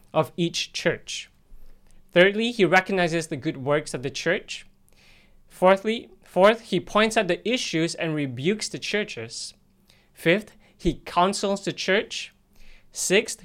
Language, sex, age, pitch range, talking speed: English, male, 20-39, 140-195 Hz, 130 wpm